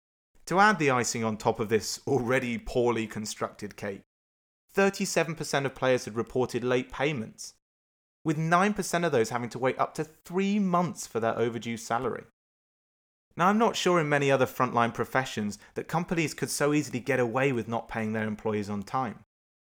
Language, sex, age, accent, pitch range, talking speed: English, male, 30-49, British, 115-160 Hz, 175 wpm